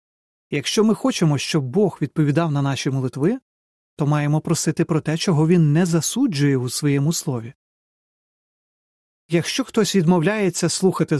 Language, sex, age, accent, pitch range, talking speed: Ukrainian, male, 30-49, native, 145-190 Hz, 135 wpm